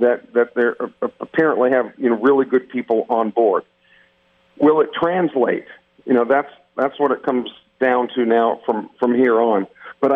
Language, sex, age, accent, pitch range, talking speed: English, male, 50-69, American, 115-135 Hz, 185 wpm